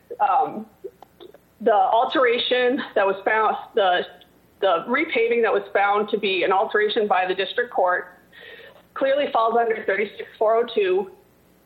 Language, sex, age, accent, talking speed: English, female, 30-49, American, 125 wpm